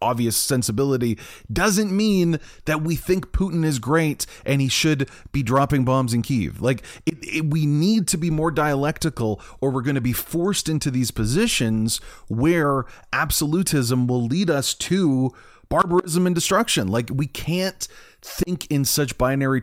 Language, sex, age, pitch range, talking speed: English, male, 30-49, 110-155 Hz, 160 wpm